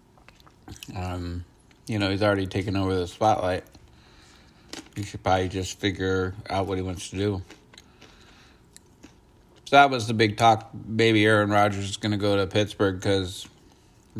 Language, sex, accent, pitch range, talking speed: English, male, American, 95-115 Hz, 150 wpm